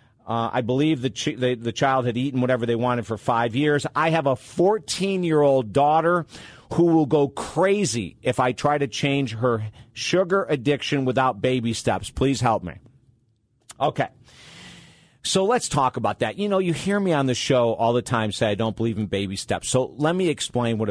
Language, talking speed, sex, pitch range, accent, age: English, 190 wpm, male, 110-145 Hz, American, 50-69